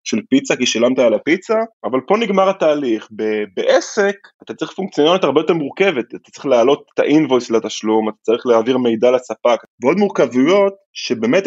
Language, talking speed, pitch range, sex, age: Hebrew, 165 wpm, 115-175 Hz, male, 20-39